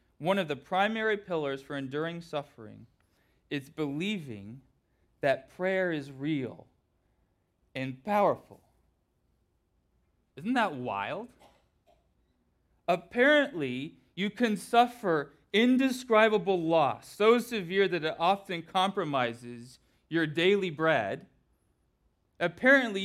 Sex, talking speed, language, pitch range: male, 90 wpm, English, 120-195 Hz